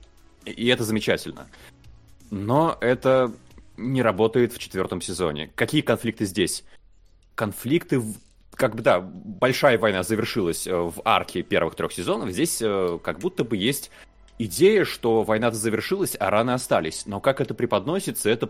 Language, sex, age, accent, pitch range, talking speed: Russian, male, 20-39, native, 105-130 Hz, 135 wpm